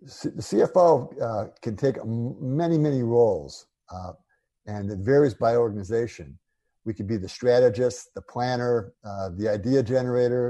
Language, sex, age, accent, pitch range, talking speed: English, male, 50-69, American, 100-125 Hz, 145 wpm